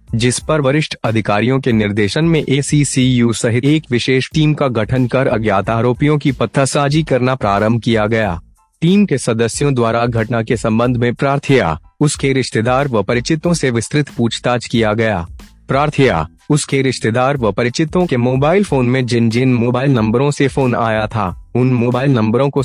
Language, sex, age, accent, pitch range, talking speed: Hindi, male, 30-49, native, 110-140 Hz, 165 wpm